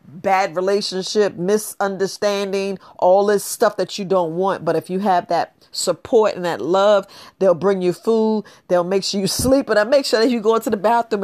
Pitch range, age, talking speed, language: 180-220 Hz, 40-59, 205 wpm, English